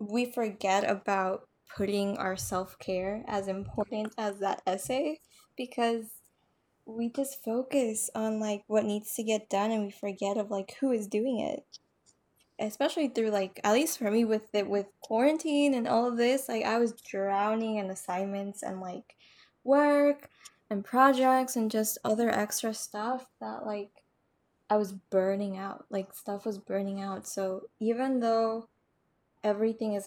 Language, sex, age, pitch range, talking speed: English, female, 10-29, 200-235 Hz, 155 wpm